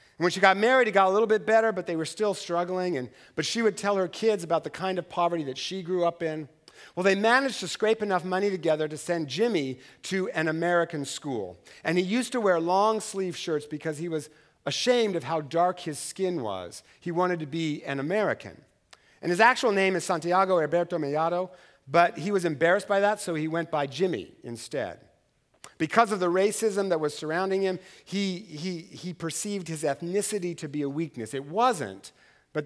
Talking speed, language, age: 205 wpm, English, 50-69